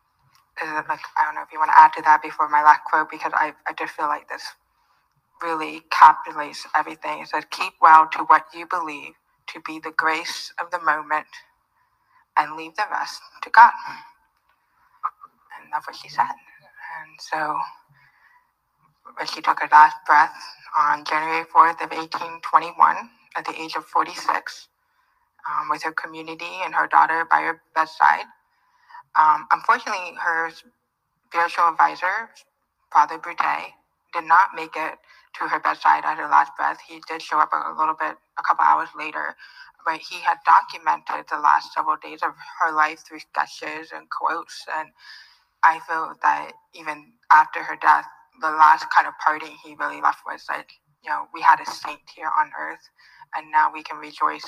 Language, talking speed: English, 175 wpm